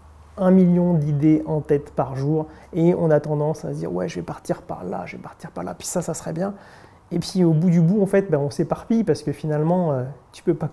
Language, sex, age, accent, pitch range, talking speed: French, male, 30-49, French, 145-170 Hz, 255 wpm